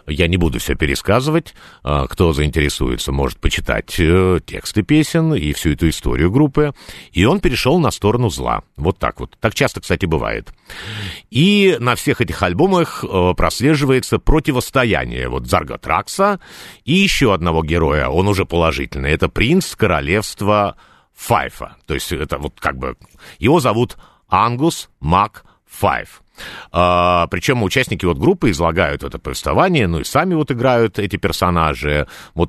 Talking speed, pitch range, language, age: 140 wpm, 80-130 Hz, Russian, 50-69